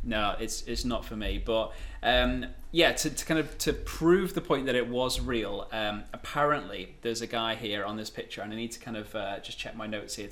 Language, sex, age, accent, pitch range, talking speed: English, male, 20-39, British, 110-135 Hz, 245 wpm